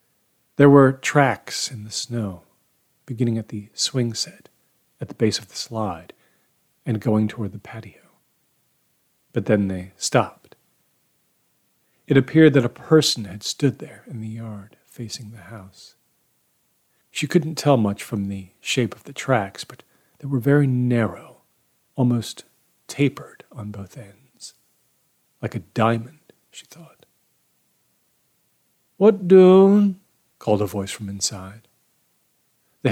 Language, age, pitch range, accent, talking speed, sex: English, 40-59, 105-155 Hz, American, 135 wpm, male